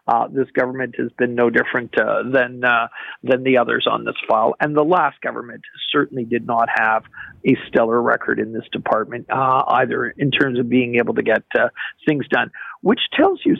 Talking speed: 200 wpm